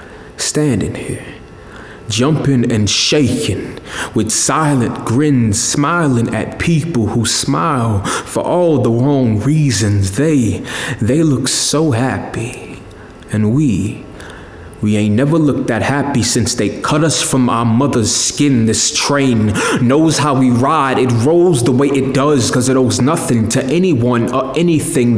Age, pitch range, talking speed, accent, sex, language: 20-39, 115-145 Hz, 140 wpm, American, male, English